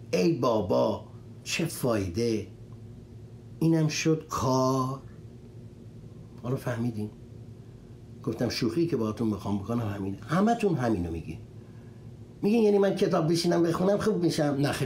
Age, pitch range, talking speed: 60-79, 110-140 Hz, 115 wpm